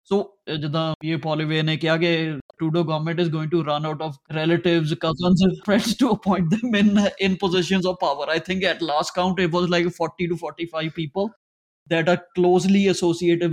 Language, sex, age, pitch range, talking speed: Punjabi, male, 20-39, 160-185 Hz, 195 wpm